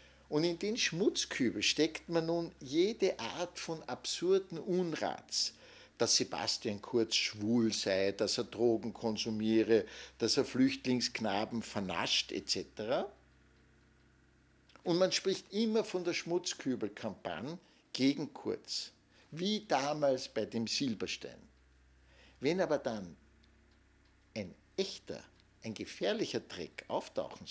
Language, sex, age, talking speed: German, male, 60-79, 105 wpm